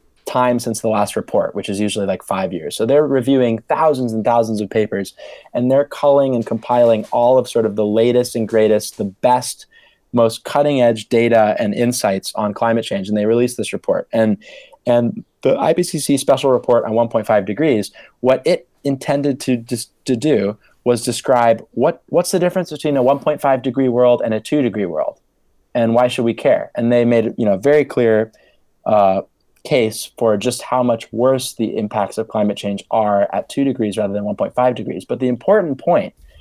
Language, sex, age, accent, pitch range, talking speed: English, male, 20-39, American, 110-130 Hz, 190 wpm